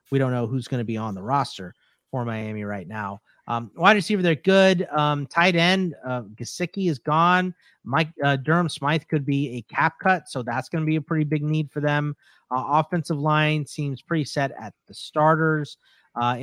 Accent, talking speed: American, 205 wpm